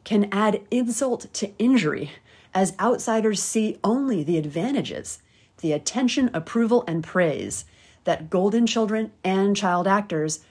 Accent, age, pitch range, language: American, 30-49, 160-230 Hz, English